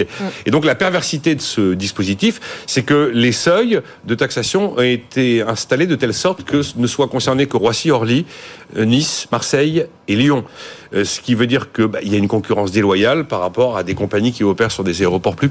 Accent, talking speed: French, 205 wpm